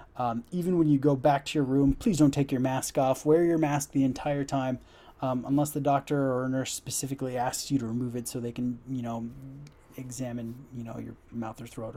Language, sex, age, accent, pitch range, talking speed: English, male, 20-39, American, 125-150 Hz, 225 wpm